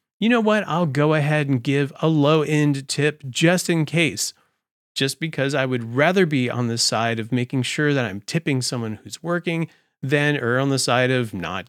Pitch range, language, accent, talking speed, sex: 120-165 Hz, English, American, 200 wpm, male